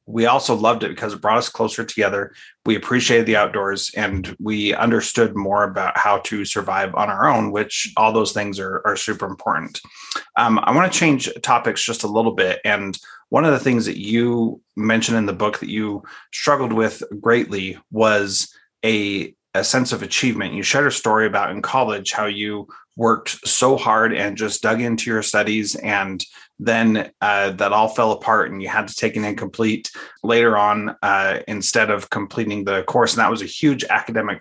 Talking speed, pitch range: 195 wpm, 100-115 Hz